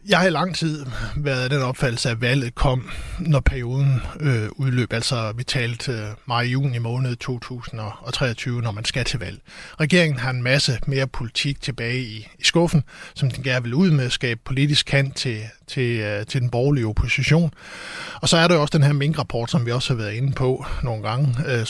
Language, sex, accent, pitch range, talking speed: Danish, male, native, 125-155 Hz, 200 wpm